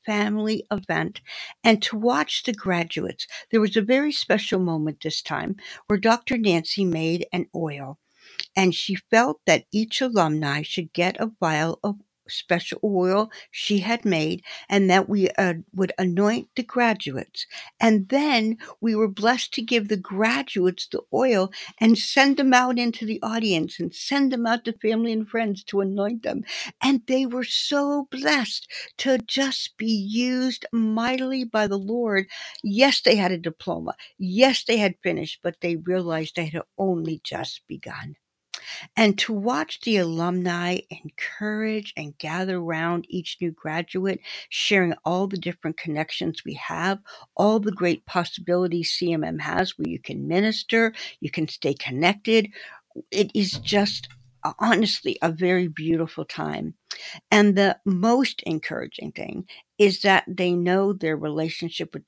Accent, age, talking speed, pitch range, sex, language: American, 60-79, 150 wpm, 170-225 Hz, female, English